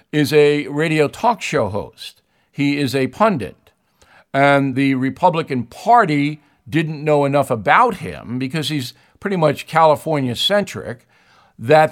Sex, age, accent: male, 50-69, American